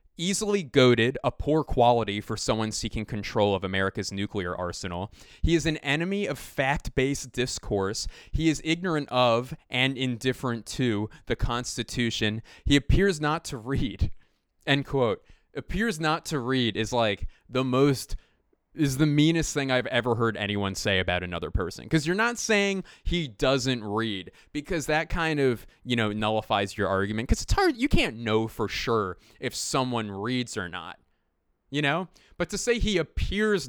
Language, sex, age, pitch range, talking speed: English, male, 20-39, 105-150 Hz, 165 wpm